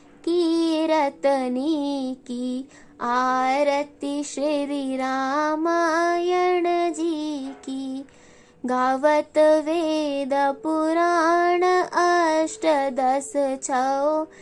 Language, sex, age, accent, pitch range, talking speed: Hindi, female, 20-39, native, 275-335 Hz, 45 wpm